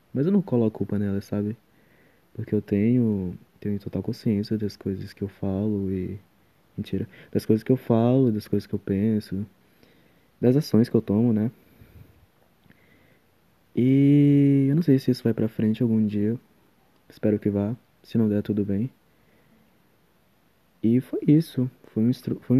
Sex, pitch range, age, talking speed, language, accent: male, 100-125 Hz, 20-39, 155 wpm, Portuguese, Brazilian